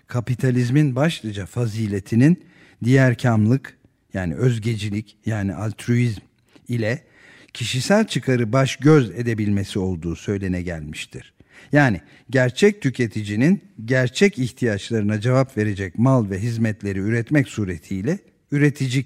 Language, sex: Turkish, male